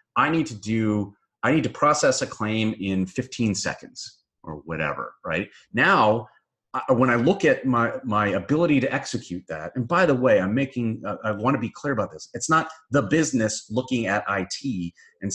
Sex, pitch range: male, 95-130 Hz